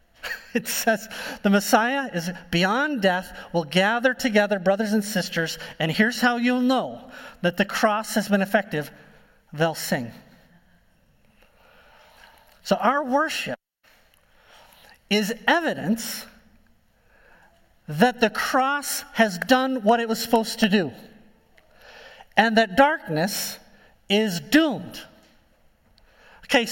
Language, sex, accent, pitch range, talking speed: English, male, American, 195-260 Hz, 110 wpm